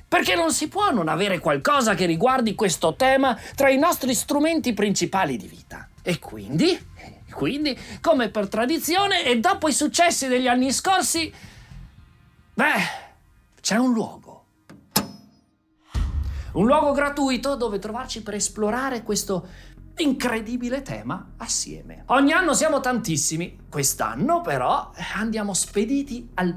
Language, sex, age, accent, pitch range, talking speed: Italian, male, 40-59, native, 210-310 Hz, 125 wpm